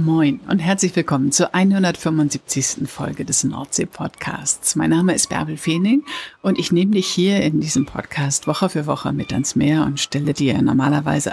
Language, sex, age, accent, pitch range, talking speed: German, female, 60-79, German, 145-180 Hz, 170 wpm